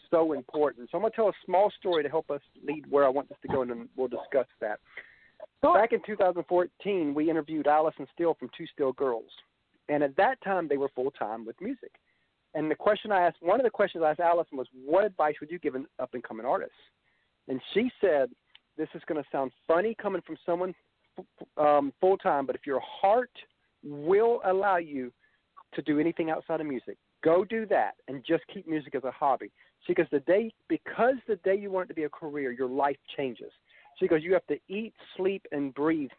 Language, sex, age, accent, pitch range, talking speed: English, male, 50-69, American, 145-190 Hz, 215 wpm